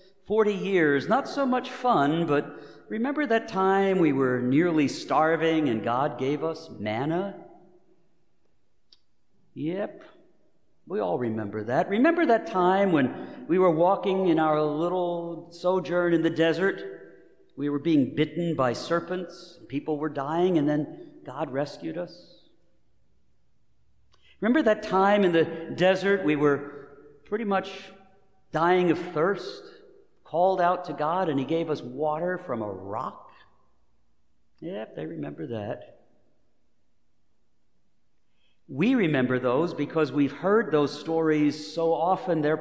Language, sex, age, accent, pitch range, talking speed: English, male, 50-69, American, 145-190 Hz, 130 wpm